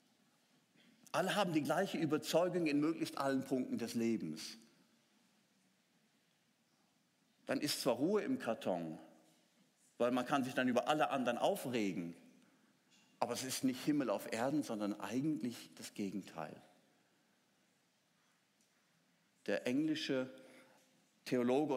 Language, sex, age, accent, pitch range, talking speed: German, male, 50-69, German, 115-155 Hz, 110 wpm